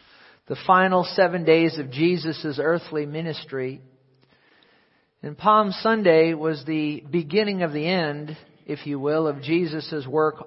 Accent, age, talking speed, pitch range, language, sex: American, 50-69, 130 wpm, 155-200 Hz, English, male